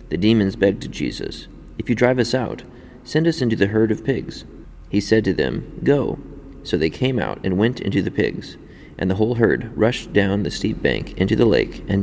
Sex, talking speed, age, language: male, 220 wpm, 30-49, English